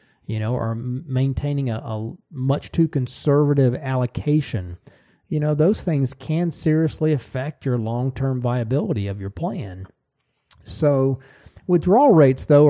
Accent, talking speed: American, 130 wpm